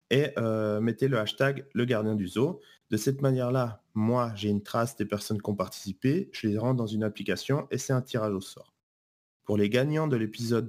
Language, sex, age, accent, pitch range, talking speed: French, male, 30-49, French, 110-140 Hz, 215 wpm